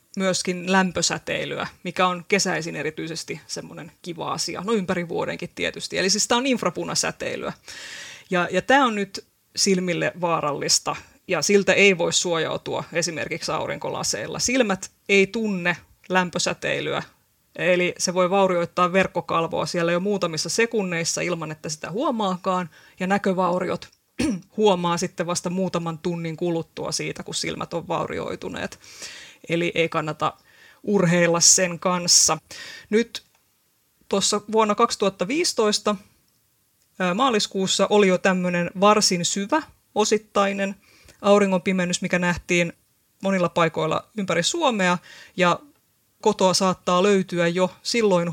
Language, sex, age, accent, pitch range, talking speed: Finnish, female, 20-39, native, 170-200 Hz, 115 wpm